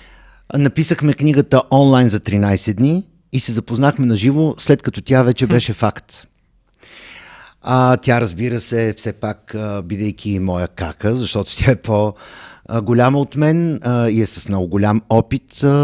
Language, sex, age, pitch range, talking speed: Bulgarian, male, 50-69, 100-135 Hz, 145 wpm